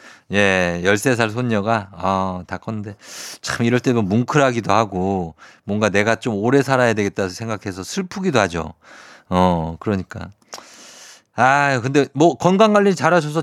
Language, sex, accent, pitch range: Korean, male, native, 100-150 Hz